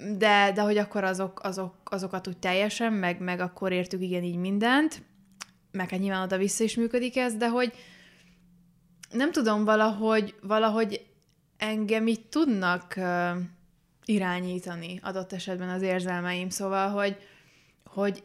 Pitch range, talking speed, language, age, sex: 190-215 Hz, 135 wpm, Hungarian, 20-39, female